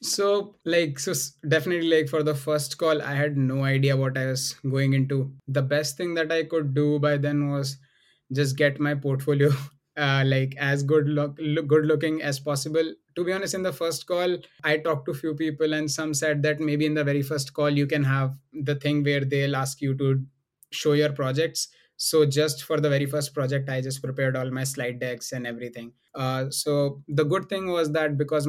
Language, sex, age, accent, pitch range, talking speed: English, male, 20-39, Indian, 135-155 Hz, 215 wpm